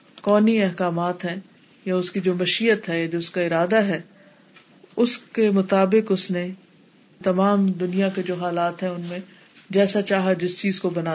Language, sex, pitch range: Urdu, female, 180-210 Hz